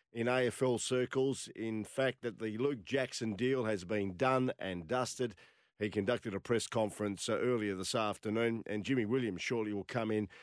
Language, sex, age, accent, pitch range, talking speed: English, male, 50-69, Australian, 110-135 Hz, 175 wpm